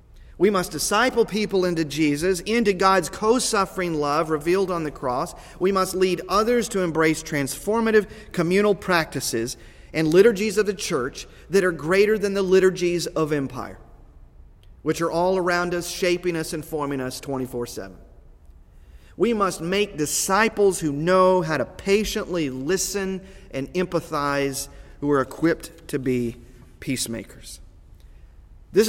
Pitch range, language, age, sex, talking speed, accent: 150-205 Hz, English, 40-59, male, 135 wpm, American